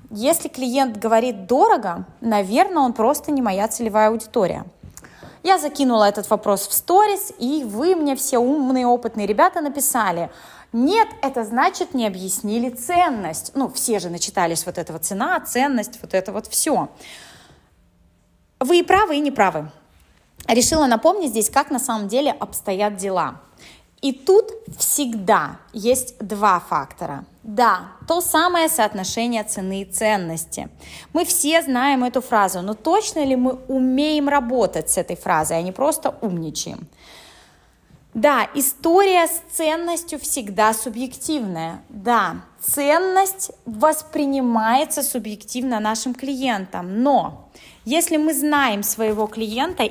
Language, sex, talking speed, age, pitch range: Russian, female, 130 wpm, 20-39, 210-295 Hz